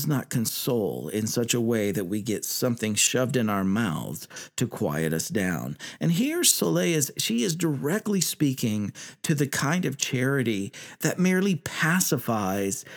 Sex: male